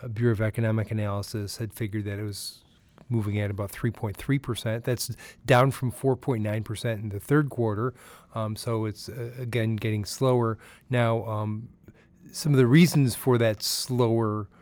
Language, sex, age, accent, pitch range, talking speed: English, male, 30-49, American, 110-125 Hz, 170 wpm